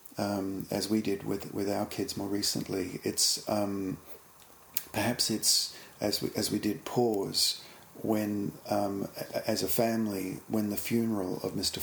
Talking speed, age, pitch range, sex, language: 150 wpm, 50-69, 95-120 Hz, male, English